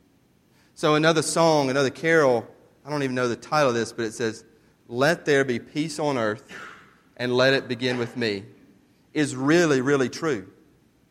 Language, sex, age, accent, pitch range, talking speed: English, male, 30-49, American, 115-155 Hz, 175 wpm